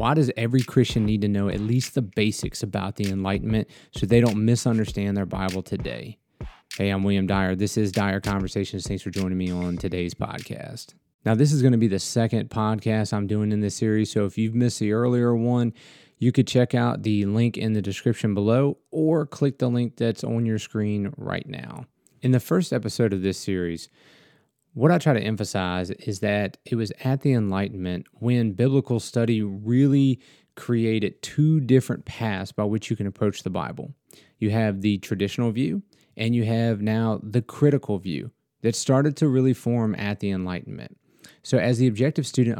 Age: 30-49